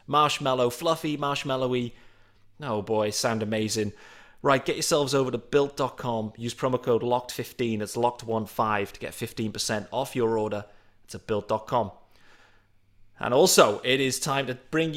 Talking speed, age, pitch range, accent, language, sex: 140 wpm, 30-49, 110-140 Hz, British, English, male